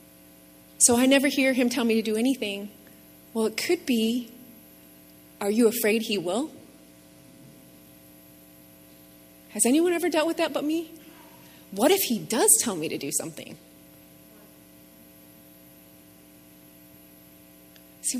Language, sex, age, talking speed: English, female, 30-49, 120 wpm